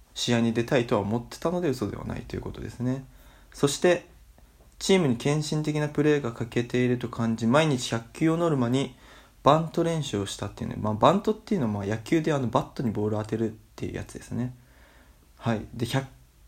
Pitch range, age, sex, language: 110-145 Hz, 20-39, male, Japanese